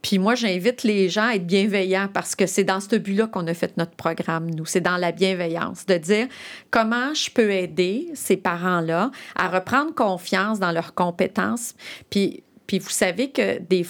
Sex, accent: female, Canadian